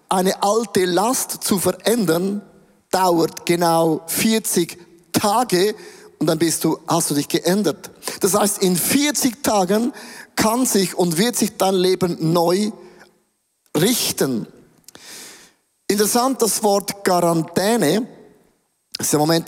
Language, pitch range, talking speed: German, 170-220 Hz, 115 wpm